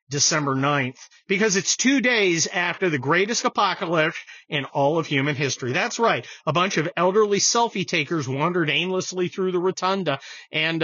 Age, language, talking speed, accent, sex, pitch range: 40-59, English, 160 wpm, American, male, 145-190 Hz